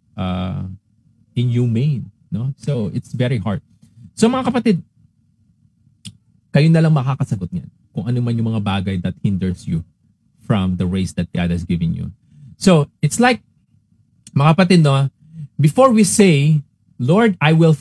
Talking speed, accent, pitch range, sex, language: 150 wpm, native, 120-165 Hz, male, Filipino